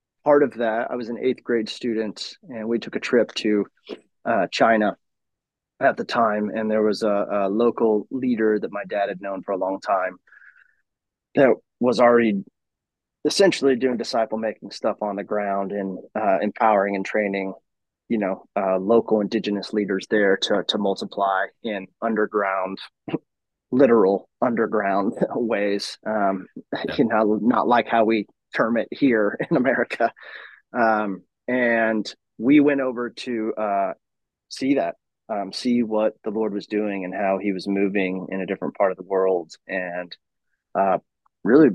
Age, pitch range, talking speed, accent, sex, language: 20-39, 95-115 Hz, 160 wpm, American, male, English